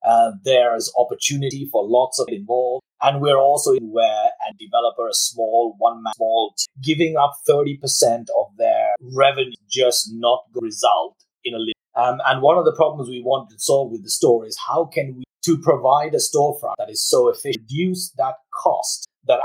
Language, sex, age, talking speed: English, male, 30-49, 190 wpm